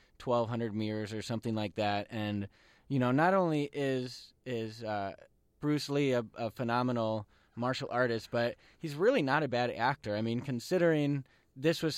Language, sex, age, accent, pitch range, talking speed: English, male, 20-39, American, 105-125 Hz, 165 wpm